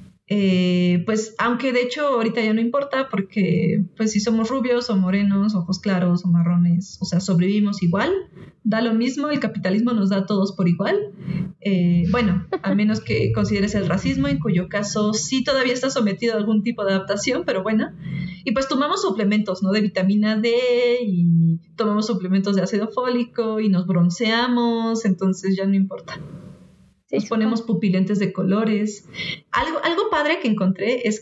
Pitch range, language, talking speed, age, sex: 195-245 Hz, Spanish, 170 wpm, 30-49, female